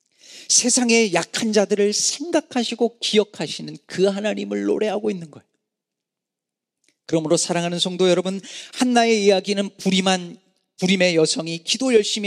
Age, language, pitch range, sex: 40-59, Korean, 150-215 Hz, male